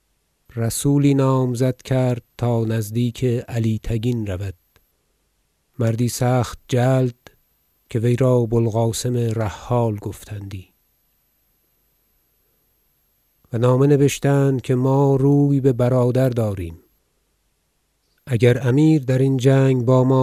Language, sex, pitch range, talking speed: Persian, male, 115-135 Hz, 100 wpm